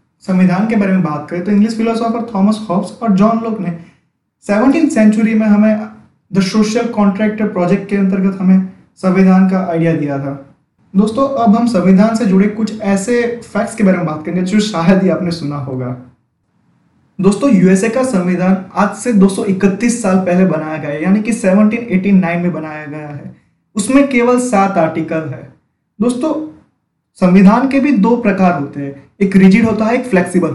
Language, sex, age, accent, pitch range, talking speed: Hindi, male, 20-39, native, 180-220 Hz, 150 wpm